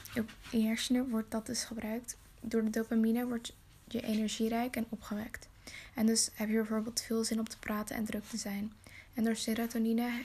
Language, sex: Dutch, female